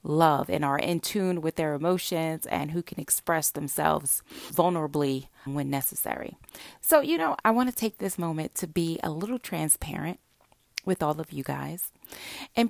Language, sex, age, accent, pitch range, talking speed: English, female, 30-49, American, 155-195 Hz, 170 wpm